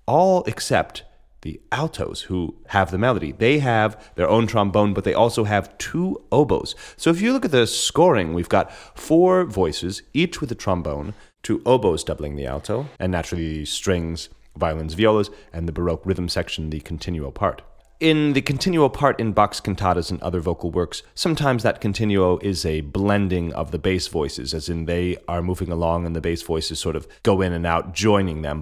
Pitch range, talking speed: 80-105 Hz, 190 wpm